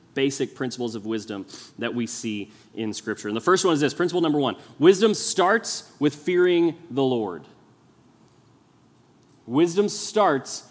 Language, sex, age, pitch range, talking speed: English, male, 20-39, 130-190 Hz, 145 wpm